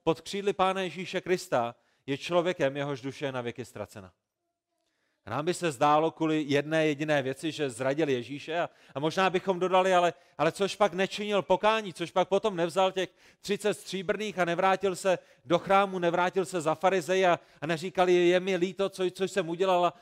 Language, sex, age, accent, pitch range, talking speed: Czech, male, 30-49, native, 140-185 Hz, 185 wpm